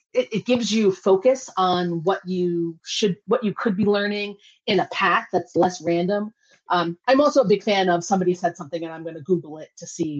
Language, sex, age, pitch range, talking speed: English, female, 30-49, 175-220 Hz, 220 wpm